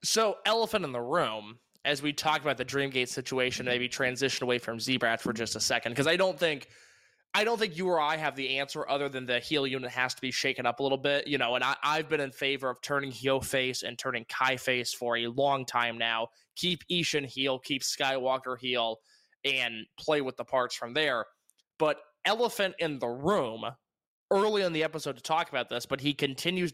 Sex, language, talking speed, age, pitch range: male, English, 220 wpm, 20-39, 130-165 Hz